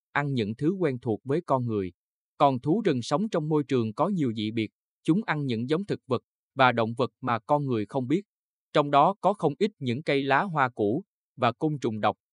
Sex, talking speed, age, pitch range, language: male, 230 wpm, 20-39, 115-155 Hz, Vietnamese